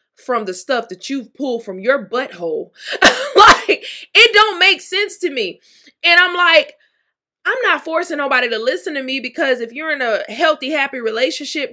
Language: English